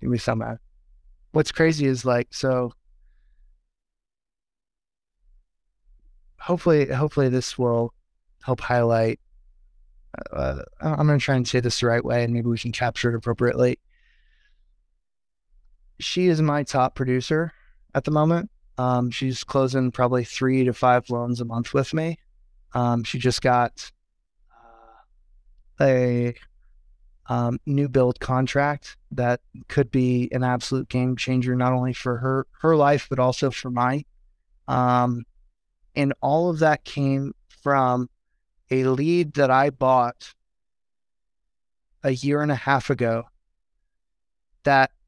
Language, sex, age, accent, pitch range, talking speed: English, male, 20-39, American, 120-140 Hz, 130 wpm